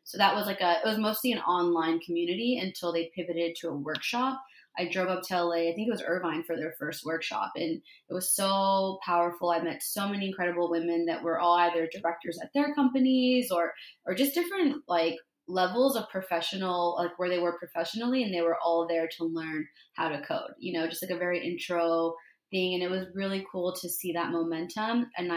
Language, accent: English, American